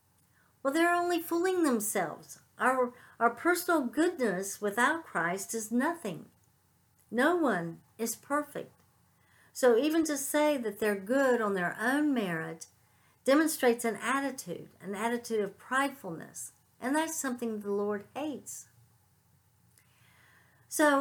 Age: 60-79